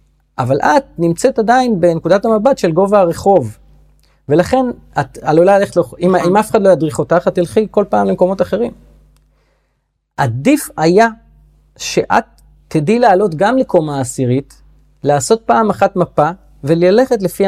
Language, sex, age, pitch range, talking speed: Hebrew, male, 30-49, 140-195 Hz, 135 wpm